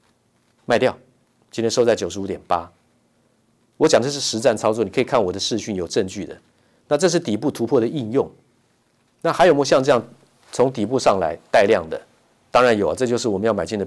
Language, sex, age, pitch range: Chinese, male, 50-69, 105-125 Hz